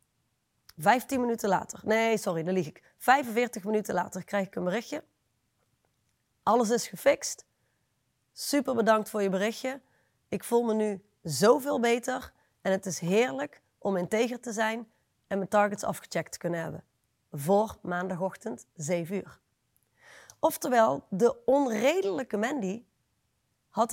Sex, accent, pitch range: female, Dutch, 190-235 Hz